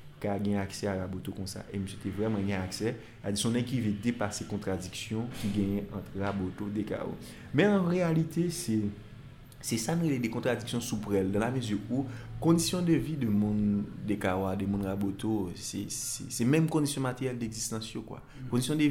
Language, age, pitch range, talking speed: French, 30-49, 95-115 Hz, 195 wpm